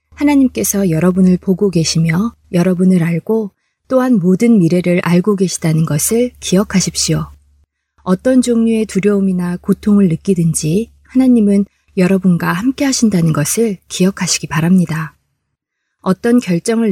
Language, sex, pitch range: Korean, female, 175-220 Hz